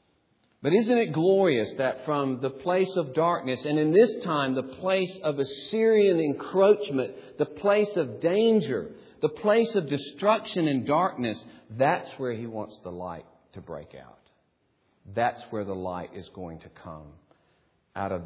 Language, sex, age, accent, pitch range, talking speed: English, male, 50-69, American, 105-155 Hz, 160 wpm